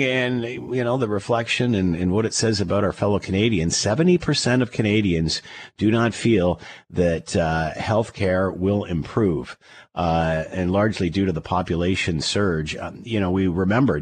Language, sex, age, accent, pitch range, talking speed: English, male, 50-69, American, 90-115 Hz, 165 wpm